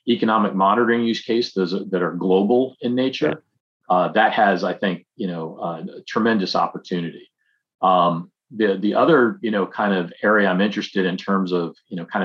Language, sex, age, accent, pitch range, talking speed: English, male, 40-59, American, 90-110 Hz, 180 wpm